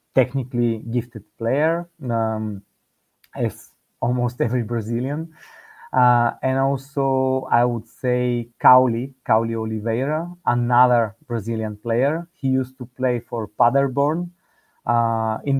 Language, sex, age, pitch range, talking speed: English, male, 30-49, 115-135 Hz, 110 wpm